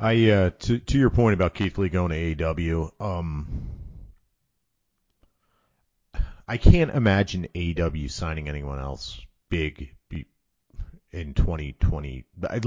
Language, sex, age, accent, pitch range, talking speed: English, male, 40-59, American, 90-135 Hz, 115 wpm